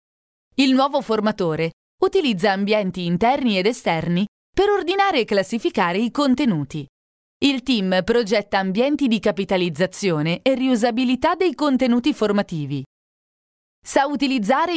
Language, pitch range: Italian, 190-280 Hz